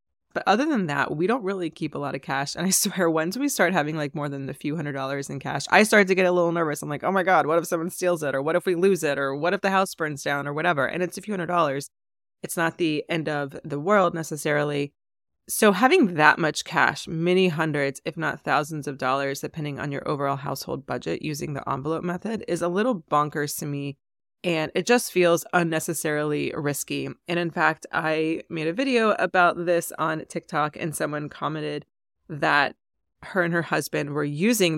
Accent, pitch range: American, 145-180 Hz